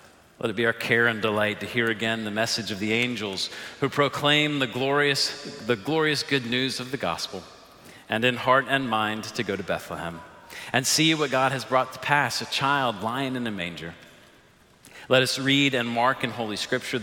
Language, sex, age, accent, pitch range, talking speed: English, male, 40-59, American, 110-135 Hz, 195 wpm